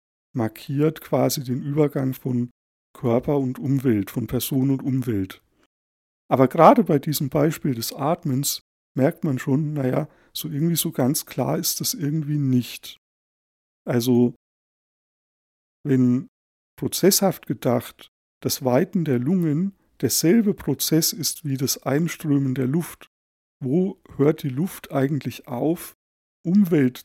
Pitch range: 125-160 Hz